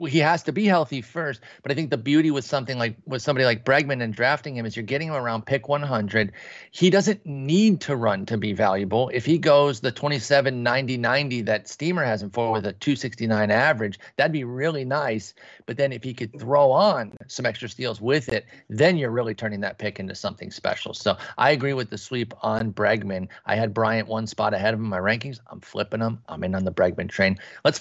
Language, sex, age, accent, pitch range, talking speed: English, male, 30-49, American, 110-140 Hz, 225 wpm